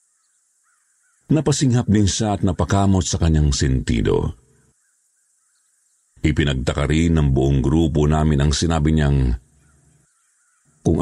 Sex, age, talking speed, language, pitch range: male, 50-69, 100 wpm, Filipino, 75-95 Hz